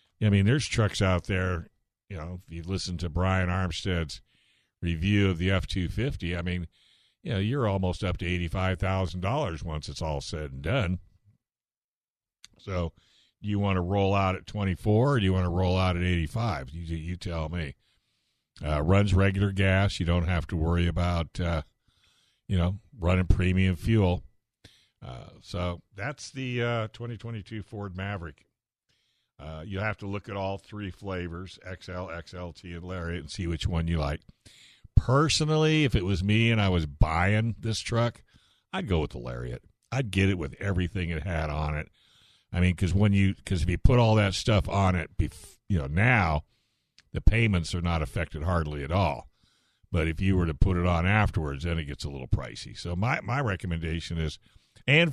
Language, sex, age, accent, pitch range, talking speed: English, male, 60-79, American, 85-105 Hz, 185 wpm